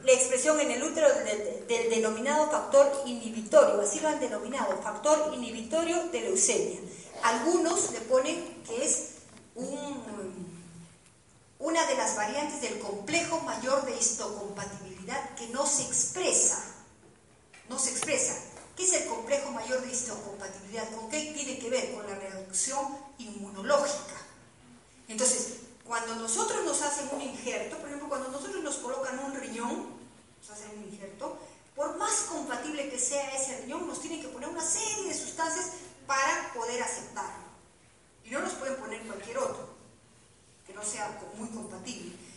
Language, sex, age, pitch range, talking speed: Spanish, female, 40-59, 230-315 Hz, 150 wpm